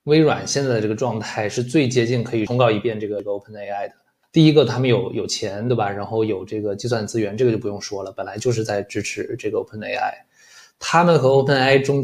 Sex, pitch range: male, 110-130 Hz